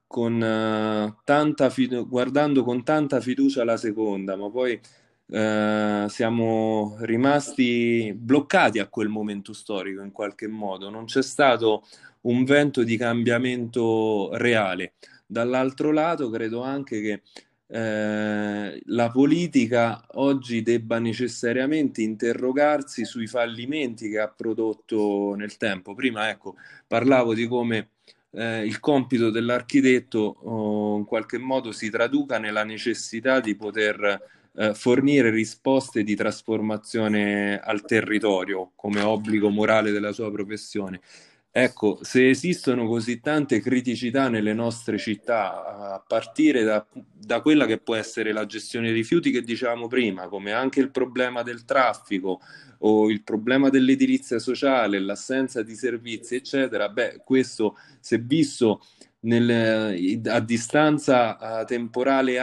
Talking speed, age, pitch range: 125 wpm, 30-49, 105-130 Hz